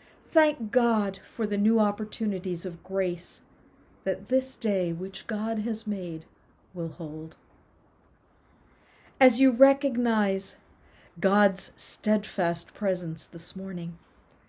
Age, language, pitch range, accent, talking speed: 50-69, English, 175-235 Hz, American, 105 wpm